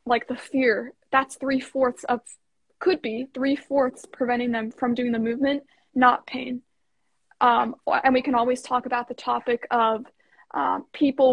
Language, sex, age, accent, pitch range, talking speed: English, female, 20-39, American, 245-285 Hz, 155 wpm